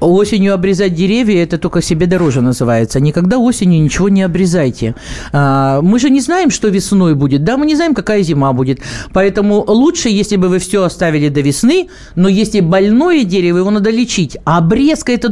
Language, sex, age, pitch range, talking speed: Russian, male, 50-69, 160-240 Hz, 190 wpm